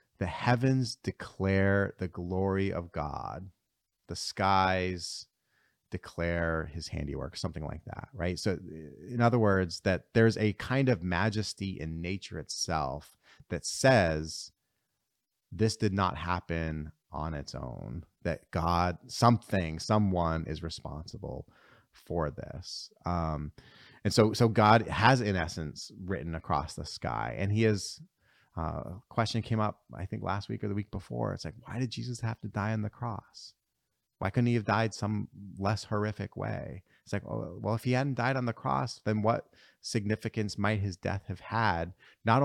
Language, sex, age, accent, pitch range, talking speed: English, male, 30-49, American, 90-115 Hz, 160 wpm